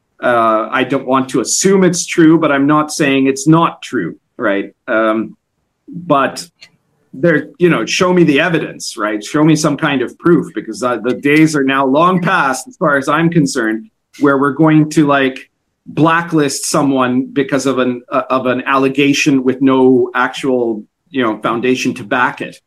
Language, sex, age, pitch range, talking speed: English, male, 40-59, 130-170 Hz, 180 wpm